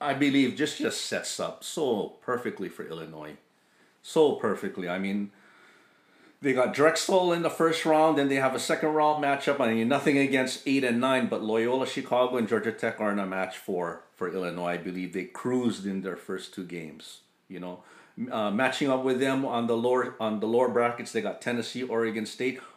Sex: male